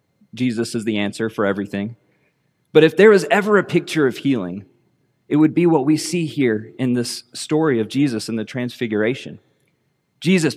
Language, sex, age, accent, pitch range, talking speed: English, male, 30-49, American, 125-155 Hz, 175 wpm